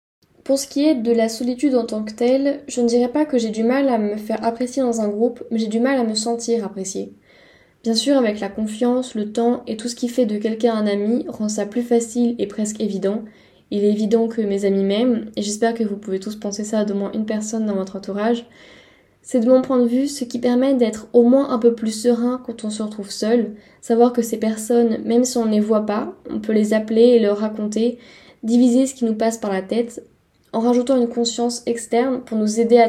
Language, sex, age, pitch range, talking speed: French, female, 10-29, 215-245 Hz, 245 wpm